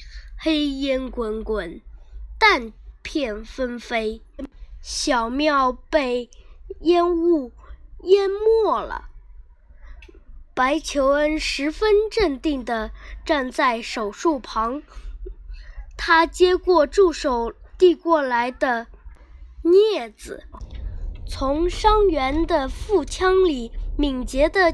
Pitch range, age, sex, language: 240-350 Hz, 10-29, female, Chinese